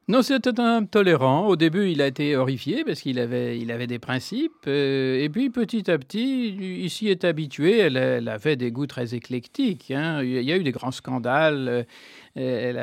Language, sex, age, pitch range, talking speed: French, male, 50-69, 130-175 Hz, 205 wpm